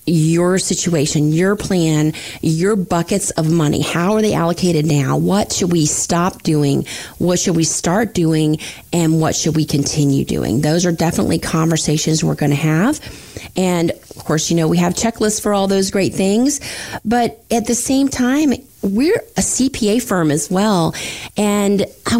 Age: 30-49